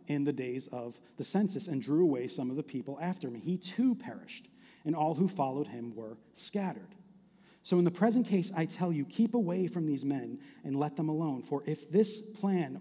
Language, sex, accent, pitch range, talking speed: English, male, American, 160-215 Hz, 215 wpm